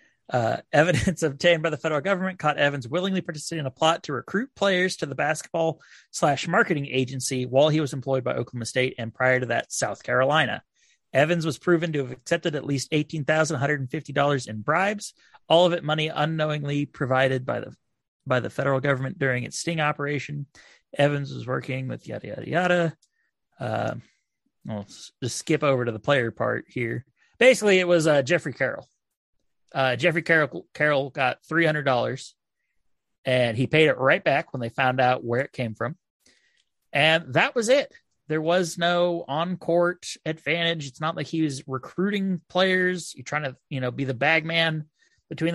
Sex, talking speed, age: male, 175 wpm, 30-49